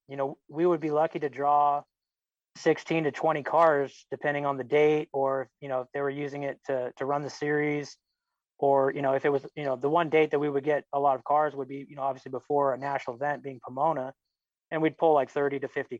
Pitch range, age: 135-150 Hz, 20-39